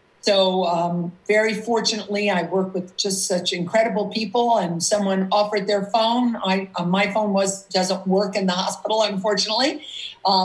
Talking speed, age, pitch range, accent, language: 160 wpm, 50-69, 190-220 Hz, American, English